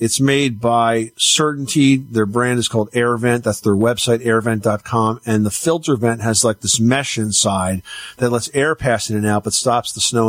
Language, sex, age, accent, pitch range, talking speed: English, male, 50-69, American, 105-130 Hz, 190 wpm